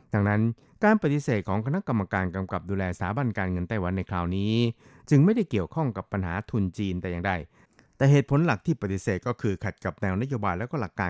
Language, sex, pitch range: Thai, male, 95-125 Hz